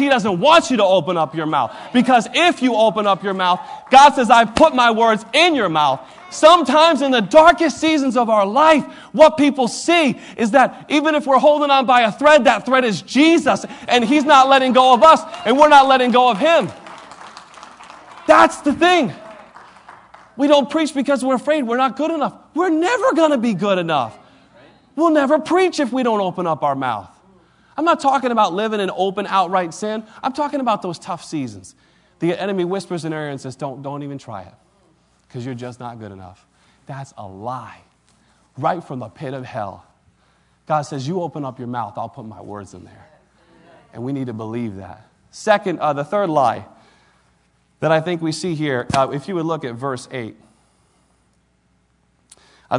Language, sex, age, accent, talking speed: English, male, 30-49, American, 200 wpm